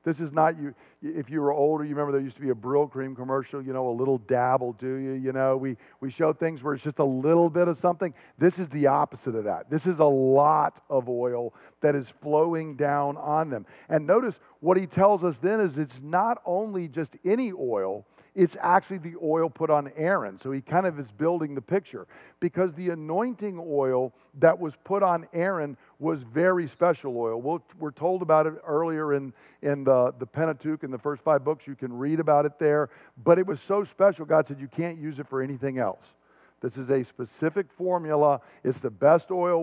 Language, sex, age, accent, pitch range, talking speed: English, male, 50-69, American, 135-170 Hz, 215 wpm